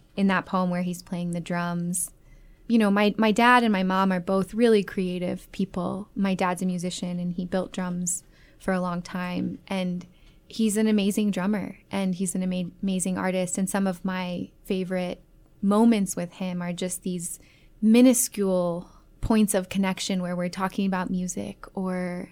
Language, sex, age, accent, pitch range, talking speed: English, female, 20-39, American, 180-200 Hz, 175 wpm